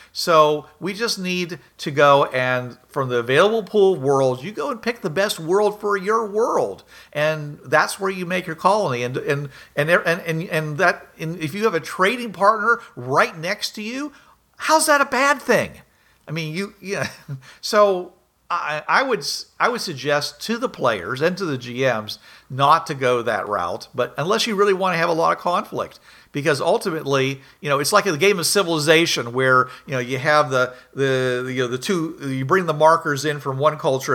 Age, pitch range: 50-69, 130-185 Hz